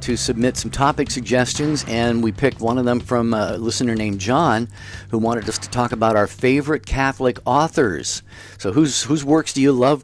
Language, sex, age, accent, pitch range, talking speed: English, male, 50-69, American, 110-130 Hz, 195 wpm